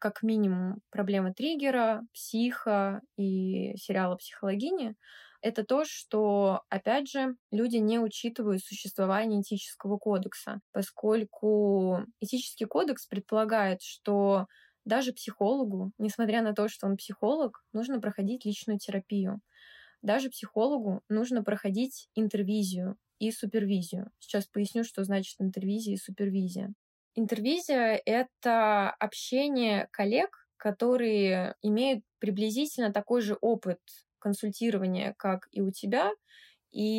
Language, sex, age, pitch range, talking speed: Russian, female, 20-39, 200-235 Hz, 110 wpm